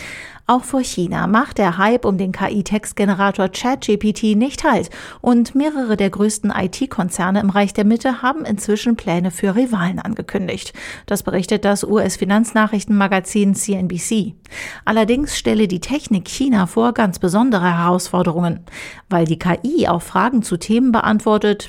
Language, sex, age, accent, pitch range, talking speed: German, female, 40-59, German, 190-235 Hz, 135 wpm